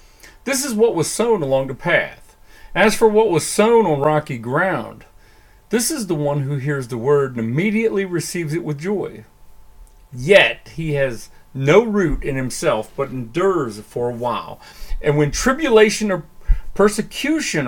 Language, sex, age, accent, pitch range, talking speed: English, male, 40-59, American, 120-195 Hz, 160 wpm